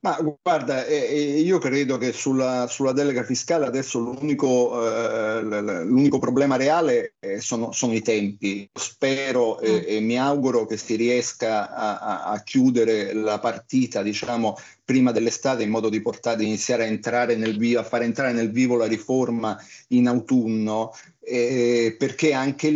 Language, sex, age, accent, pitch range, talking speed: Italian, male, 50-69, native, 115-135 Hz, 155 wpm